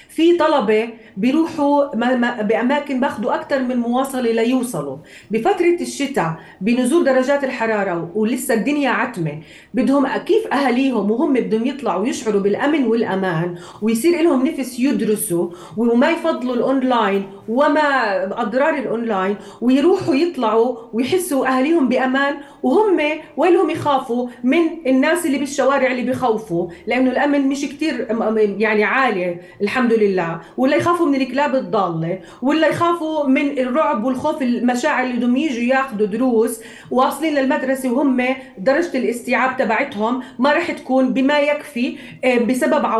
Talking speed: 120 wpm